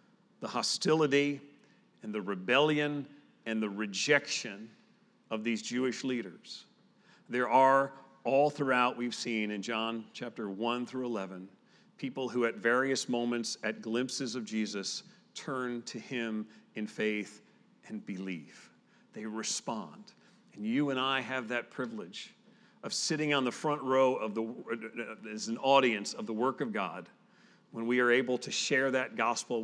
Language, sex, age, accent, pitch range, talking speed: English, male, 40-59, American, 110-145 Hz, 150 wpm